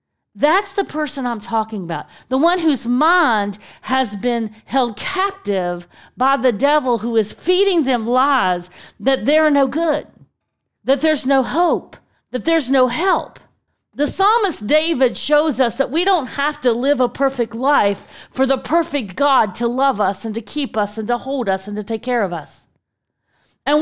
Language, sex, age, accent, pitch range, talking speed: English, female, 40-59, American, 240-310 Hz, 175 wpm